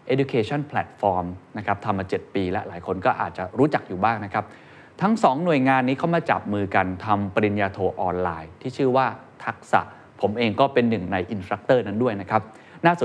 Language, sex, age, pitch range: Thai, male, 20-39, 100-135 Hz